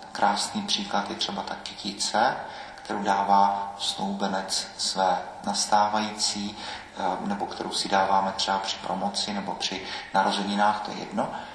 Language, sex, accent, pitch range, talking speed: Czech, male, native, 100-110 Hz, 125 wpm